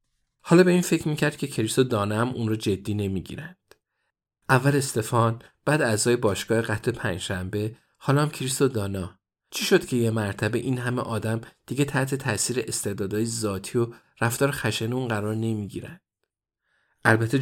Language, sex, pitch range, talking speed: Persian, male, 105-130 Hz, 145 wpm